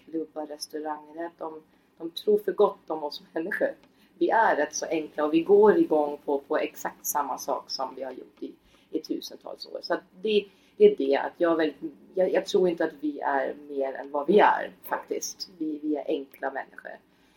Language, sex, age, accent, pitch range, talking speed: Swedish, female, 30-49, native, 150-190 Hz, 195 wpm